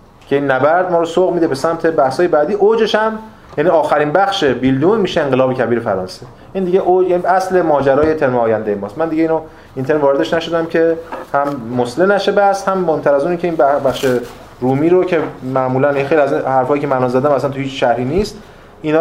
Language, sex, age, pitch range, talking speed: Persian, male, 30-49, 125-170 Hz, 210 wpm